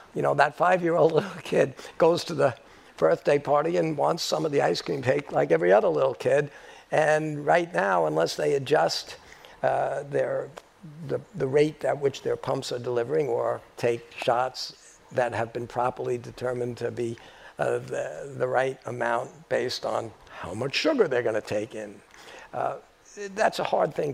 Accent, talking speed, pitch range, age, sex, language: American, 175 wpm, 120-155 Hz, 60-79, male, English